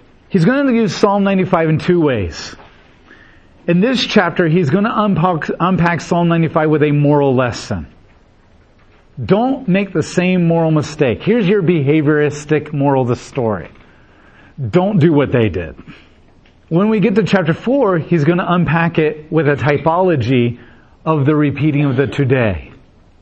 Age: 40-59